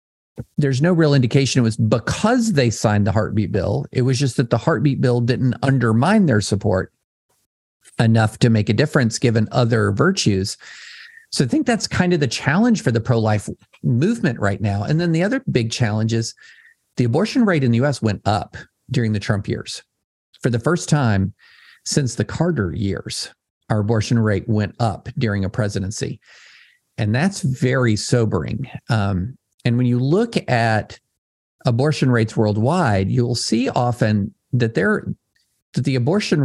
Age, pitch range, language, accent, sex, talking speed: 50-69, 110-145 Hz, English, American, male, 165 wpm